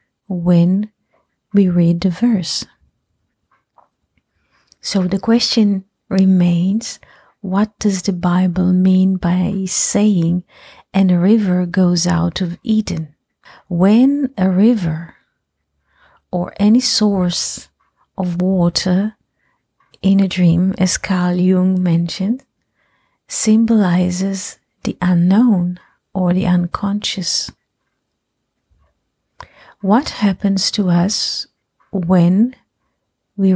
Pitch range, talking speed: 175-205 Hz, 90 wpm